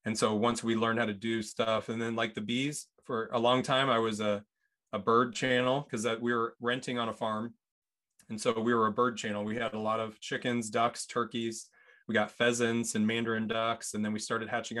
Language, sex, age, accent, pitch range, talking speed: English, male, 20-39, American, 110-125 Hz, 230 wpm